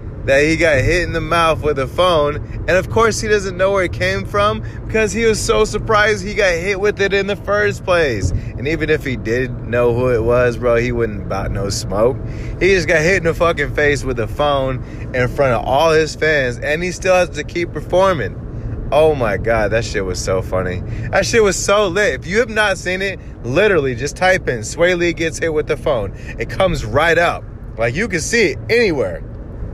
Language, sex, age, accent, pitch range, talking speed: English, male, 20-39, American, 125-200 Hz, 230 wpm